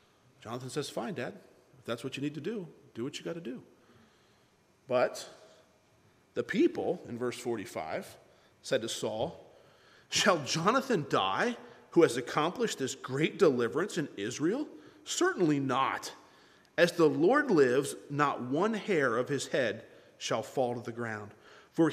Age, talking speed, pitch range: 40-59, 150 wpm, 130-205 Hz